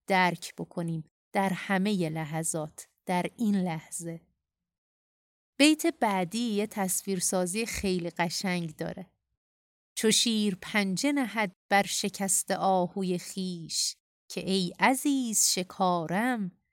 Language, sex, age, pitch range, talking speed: Persian, female, 30-49, 180-215 Hz, 95 wpm